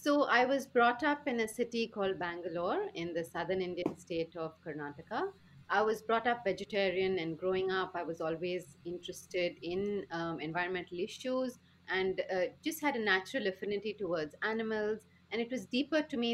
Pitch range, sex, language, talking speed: 175-220 Hz, female, English, 175 wpm